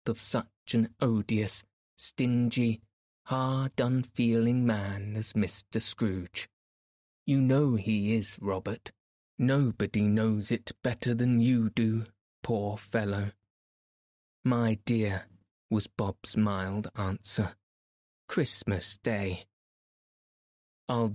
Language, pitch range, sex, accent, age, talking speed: English, 100-120 Hz, male, British, 20-39, 95 wpm